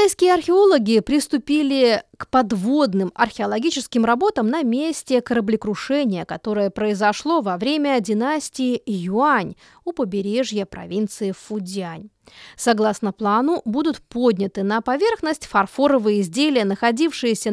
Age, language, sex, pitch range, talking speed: 20-39, Russian, female, 210-285 Hz, 100 wpm